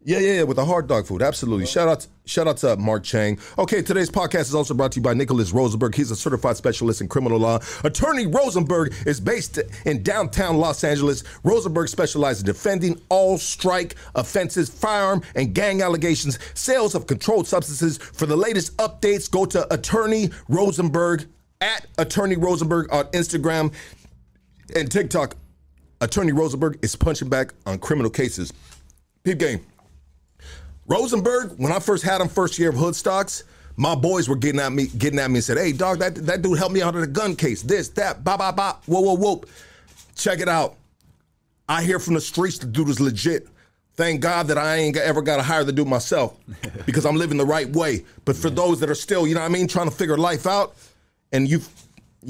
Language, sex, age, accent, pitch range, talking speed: English, male, 40-59, American, 135-180 Hz, 195 wpm